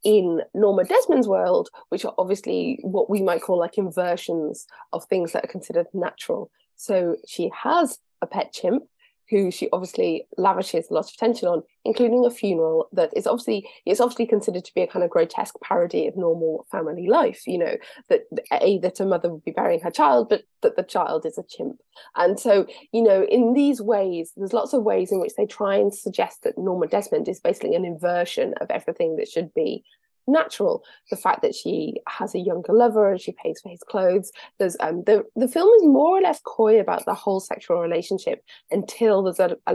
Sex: female